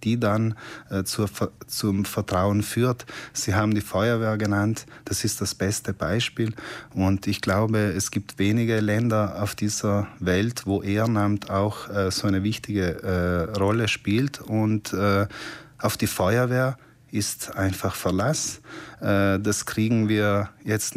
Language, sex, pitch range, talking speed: German, male, 100-120 Hz, 145 wpm